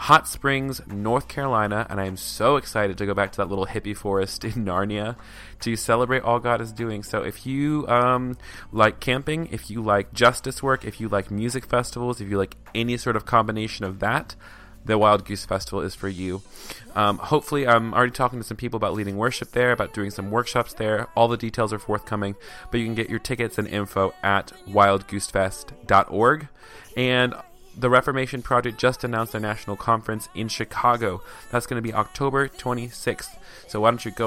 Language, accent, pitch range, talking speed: English, American, 100-120 Hz, 195 wpm